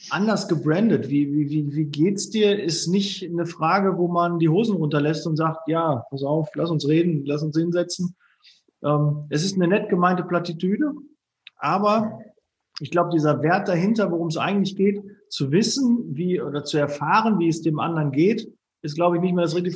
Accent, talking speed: German, 190 wpm